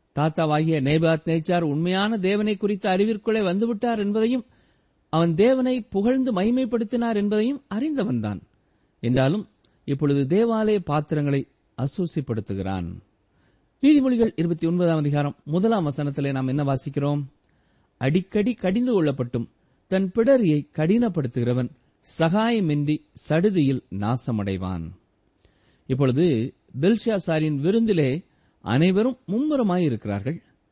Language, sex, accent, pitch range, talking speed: Tamil, male, native, 130-205 Hz, 45 wpm